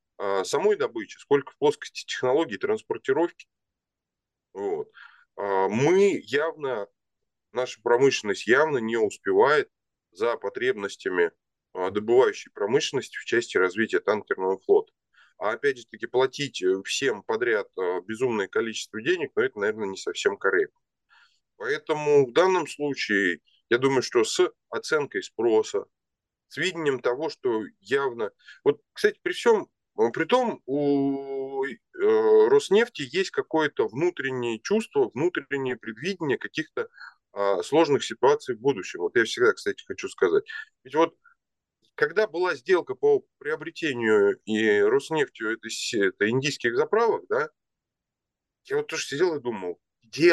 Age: 20-39